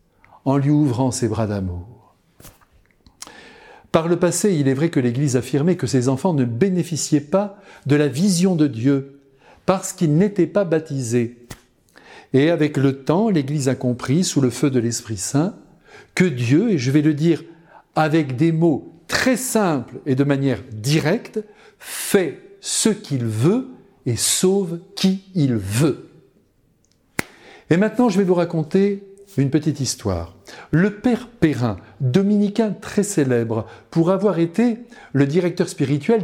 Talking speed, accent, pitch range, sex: 145 wpm, French, 130-190 Hz, male